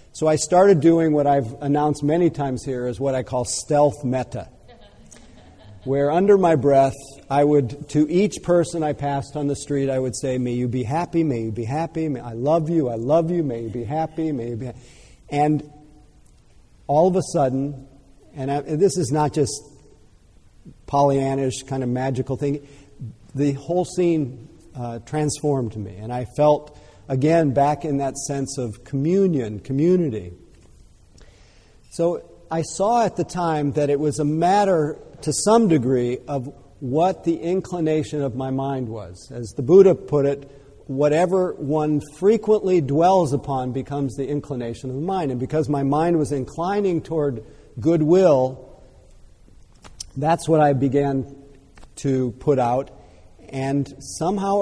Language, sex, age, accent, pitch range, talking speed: English, male, 50-69, American, 130-160 Hz, 160 wpm